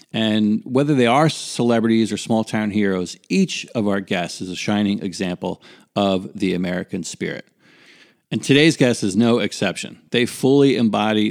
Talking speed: 155 wpm